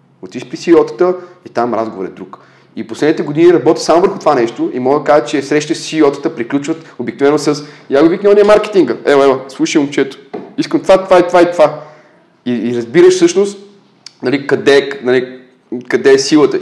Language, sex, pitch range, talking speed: Bulgarian, male, 125-175 Hz, 190 wpm